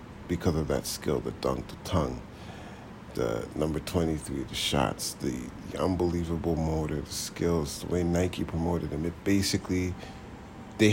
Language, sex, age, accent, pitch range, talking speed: English, male, 40-59, American, 85-105 Hz, 150 wpm